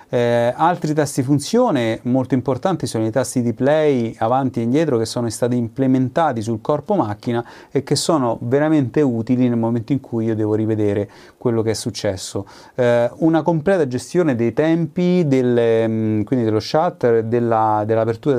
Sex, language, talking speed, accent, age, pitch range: male, Italian, 155 wpm, native, 30-49, 115-145 Hz